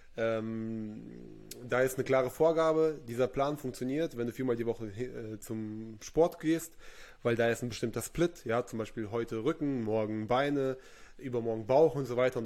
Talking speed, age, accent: 180 wpm, 20-39, German